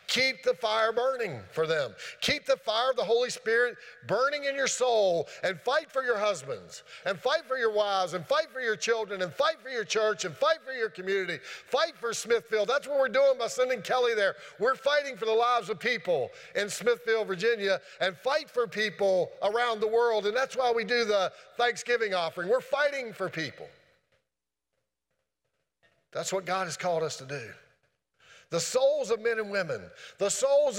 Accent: American